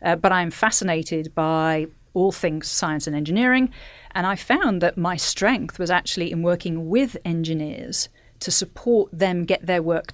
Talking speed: 165 wpm